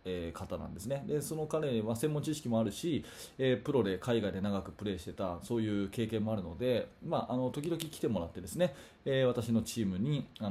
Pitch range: 100-145 Hz